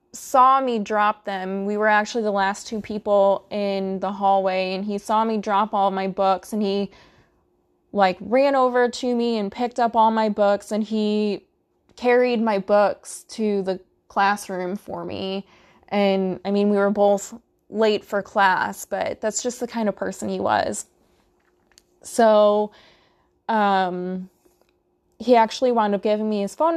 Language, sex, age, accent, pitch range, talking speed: English, female, 20-39, American, 195-230 Hz, 165 wpm